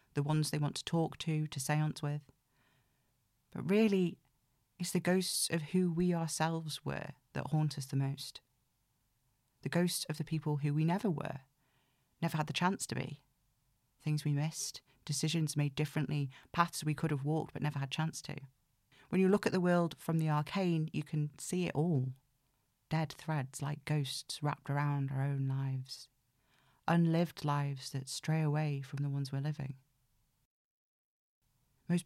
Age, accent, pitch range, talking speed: 40-59, British, 130-160 Hz, 170 wpm